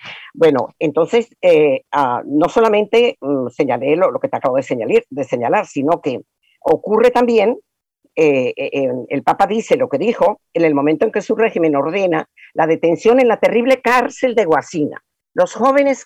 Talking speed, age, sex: 180 wpm, 50-69, female